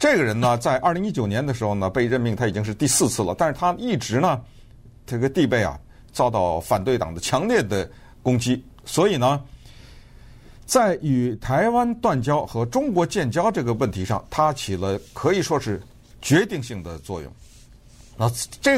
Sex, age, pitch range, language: male, 50-69, 110-145 Hz, Chinese